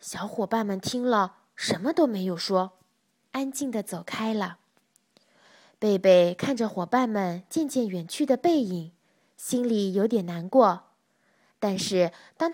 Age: 20-39